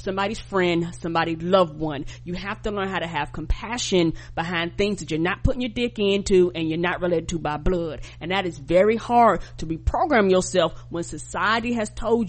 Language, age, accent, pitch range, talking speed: English, 30-49, American, 175-215 Hz, 200 wpm